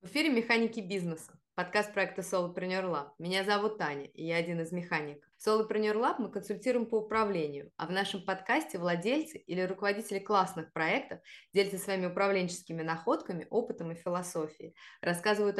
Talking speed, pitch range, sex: 155 wpm, 175-210 Hz, female